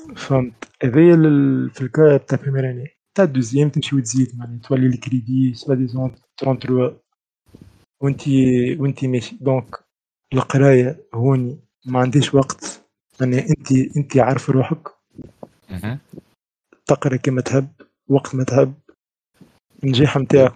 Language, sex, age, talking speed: Arabic, male, 20-39, 110 wpm